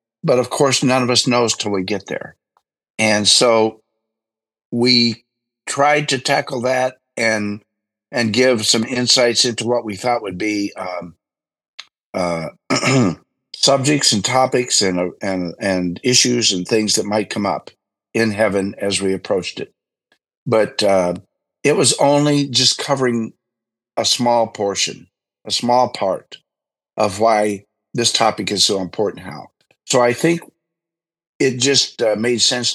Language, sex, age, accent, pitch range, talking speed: English, male, 50-69, American, 105-125 Hz, 145 wpm